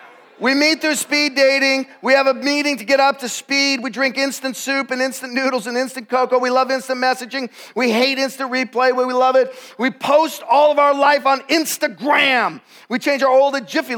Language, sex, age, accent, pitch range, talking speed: English, male, 40-59, American, 225-325 Hz, 210 wpm